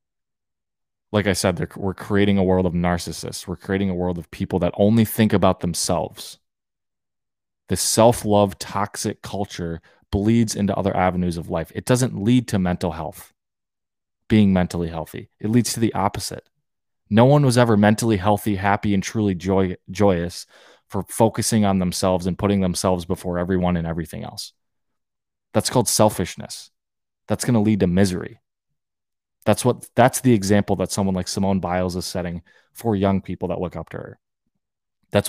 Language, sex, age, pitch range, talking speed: English, male, 20-39, 90-110 Hz, 165 wpm